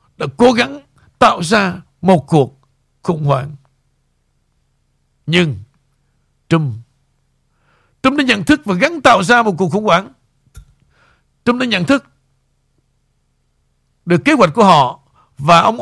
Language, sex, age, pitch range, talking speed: Vietnamese, male, 60-79, 135-210 Hz, 130 wpm